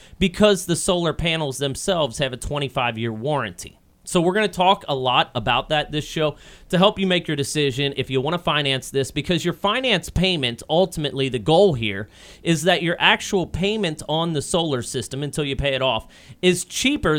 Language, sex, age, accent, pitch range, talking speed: English, male, 30-49, American, 130-175 Hz, 195 wpm